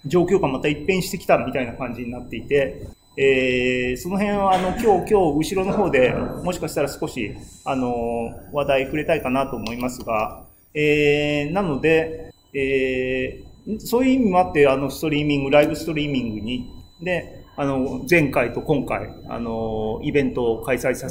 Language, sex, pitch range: Japanese, male, 130-180 Hz